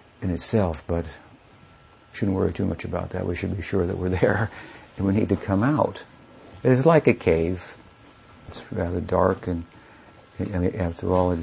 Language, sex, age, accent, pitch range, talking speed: English, male, 60-79, American, 85-105 Hz, 185 wpm